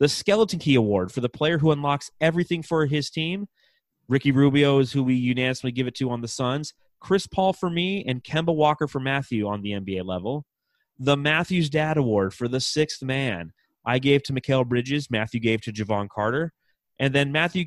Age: 30-49